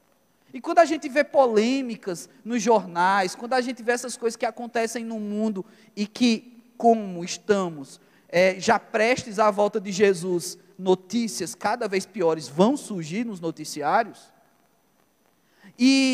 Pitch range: 210-260 Hz